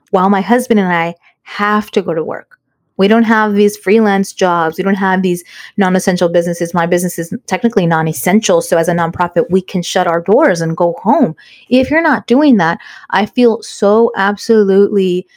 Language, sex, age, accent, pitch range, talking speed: English, female, 20-39, American, 170-215 Hz, 185 wpm